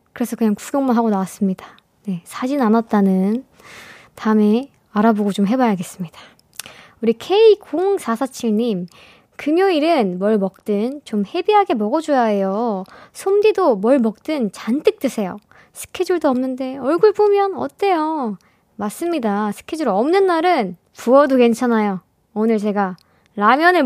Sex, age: male, 20-39